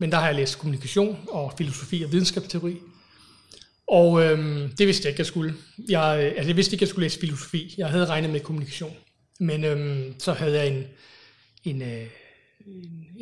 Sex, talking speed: male, 180 wpm